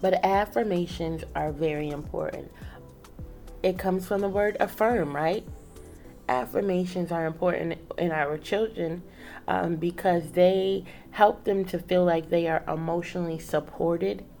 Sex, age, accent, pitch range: female, 30-49, American, 160-195 Hz